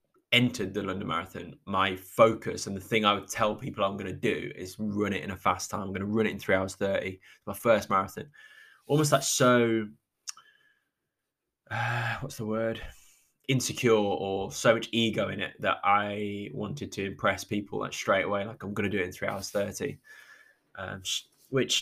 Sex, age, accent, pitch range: male, 10-29, British, 100-125 Hz